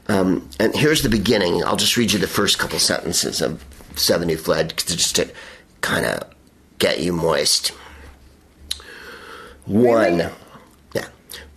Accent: American